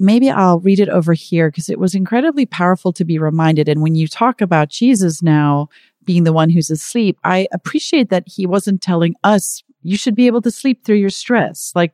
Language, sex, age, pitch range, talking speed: English, female, 40-59, 155-205 Hz, 215 wpm